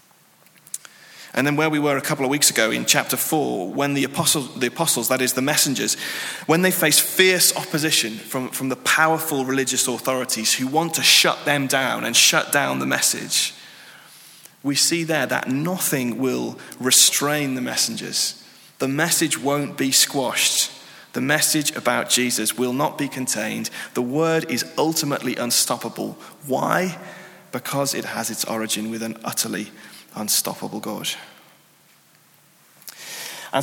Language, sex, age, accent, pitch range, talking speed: English, male, 30-49, British, 130-160 Hz, 145 wpm